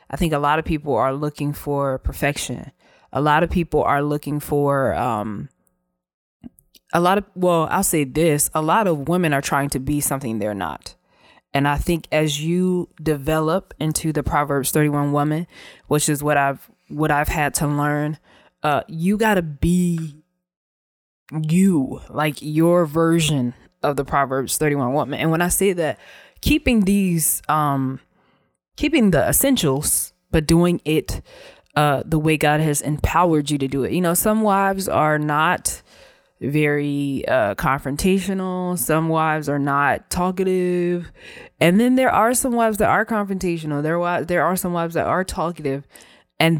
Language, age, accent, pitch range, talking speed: English, 20-39, American, 145-175 Hz, 160 wpm